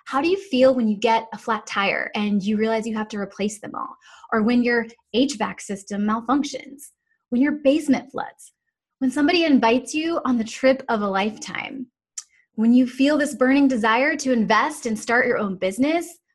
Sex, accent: female, American